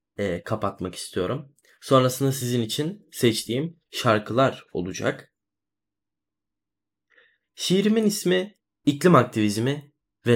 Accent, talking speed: native, 80 wpm